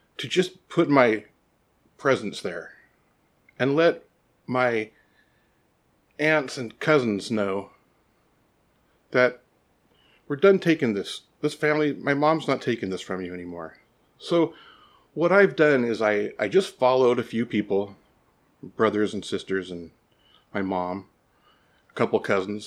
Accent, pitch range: American, 100-145 Hz